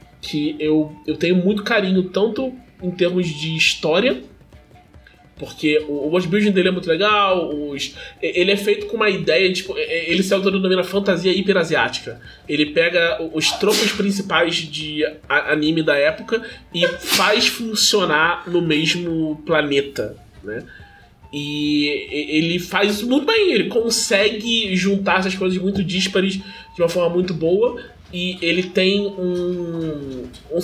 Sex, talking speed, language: male, 145 wpm, Portuguese